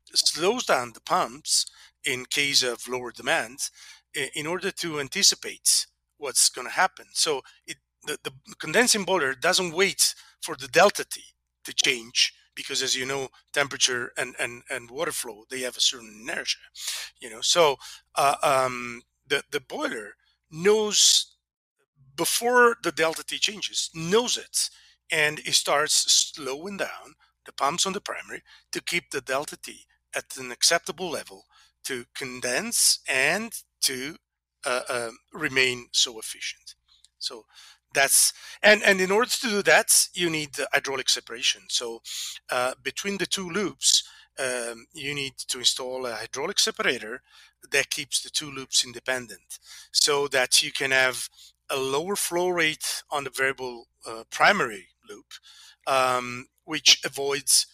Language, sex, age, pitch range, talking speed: English, male, 40-59, 125-185 Hz, 150 wpm